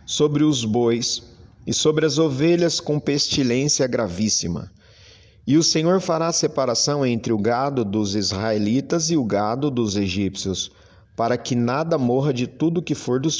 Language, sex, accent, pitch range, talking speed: Portuguese, male, Brazilian, 105-145 Hz, 150 wpm